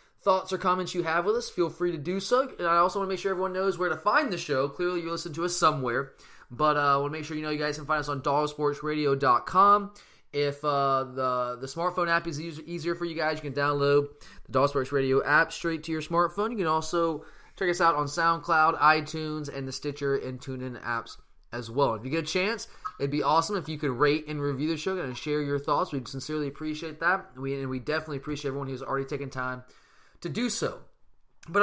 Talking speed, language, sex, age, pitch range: 240 wpm, English, male, 20-39, 140-170 Hz